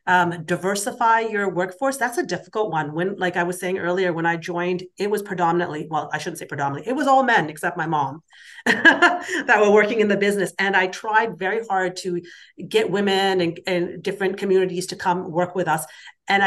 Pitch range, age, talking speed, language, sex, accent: 170-200 Hz, 40-59, 205 wpm, English, female, American